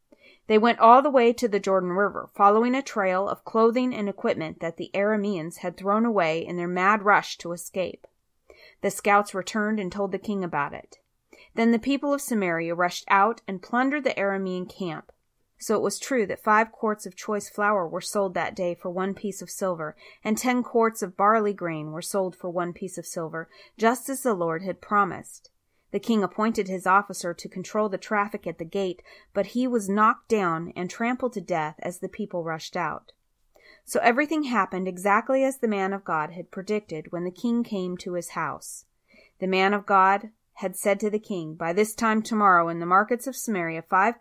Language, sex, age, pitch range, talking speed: English, female, 30-49, 180-220 Hz, 205 wpm